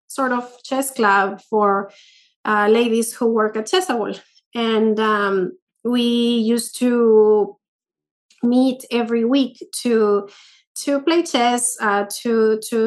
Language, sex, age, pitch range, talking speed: English, female, 30-49, 205-245 Hz, 120 wpm